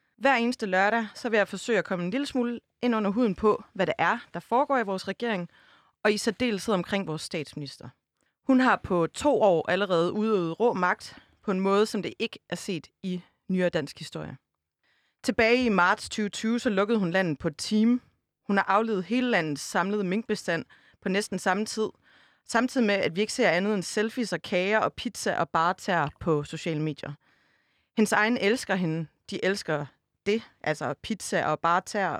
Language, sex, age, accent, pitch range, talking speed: Danish, female, 30-49, native, 170-220 Hz, 190 wpm